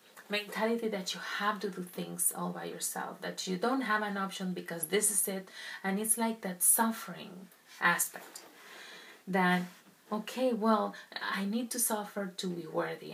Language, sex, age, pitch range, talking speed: English, female, 30-49, 180-215 Hz, 165 wpm